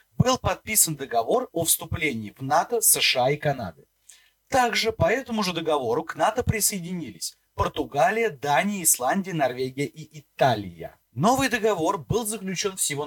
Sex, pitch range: male, 145-220 Hz